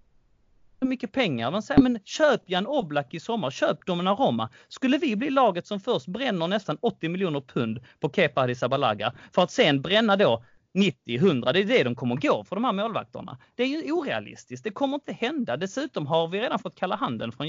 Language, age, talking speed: Swedish, 30-49, 205 wpm